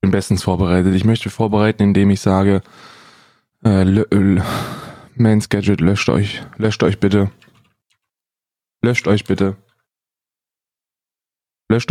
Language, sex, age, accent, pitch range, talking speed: German, male, 20-39, German, 95-120 Hz, 120 wpm